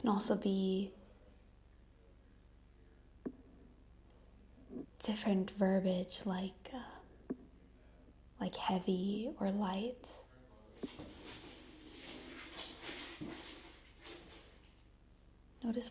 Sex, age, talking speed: female, 20-39, 45 wpm